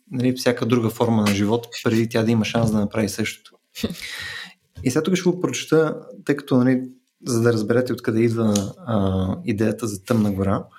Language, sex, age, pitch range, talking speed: Bulgarian, male, 20-39, 110-140 Hz, 185 wpm